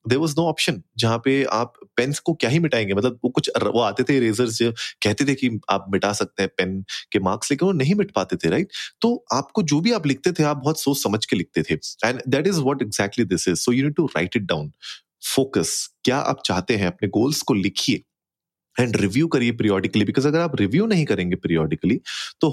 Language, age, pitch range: Hindi, 30-49, 105-140 Hz